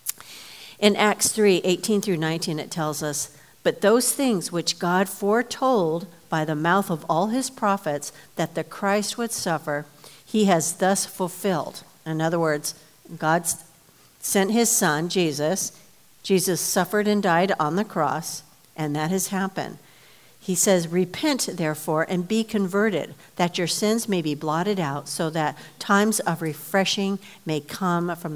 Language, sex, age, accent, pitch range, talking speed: English, female, 60-79, American, 155-195 Hz, 150 wpm